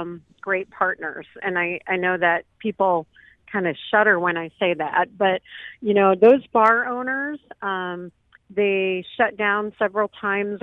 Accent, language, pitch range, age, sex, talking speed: American, English, 180-210 Hz, 40-59, female, 150 wpm